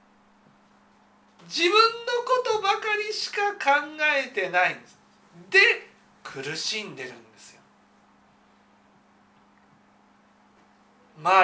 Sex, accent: male, native